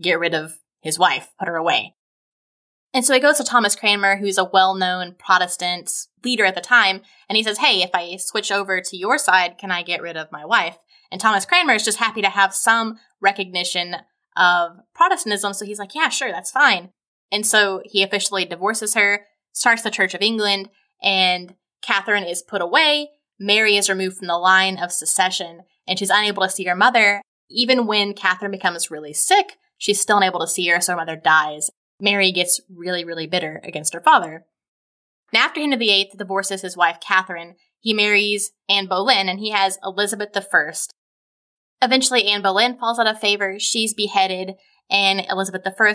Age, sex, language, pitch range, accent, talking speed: 10-29, female, English, 180-210 Hz, American, 190 wpm